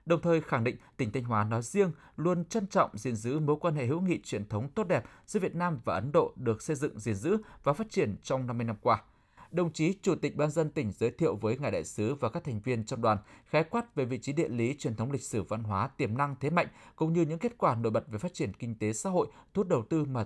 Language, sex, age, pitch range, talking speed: Vietnamese, male, 20-39, 115-165 Hz, 285 wpm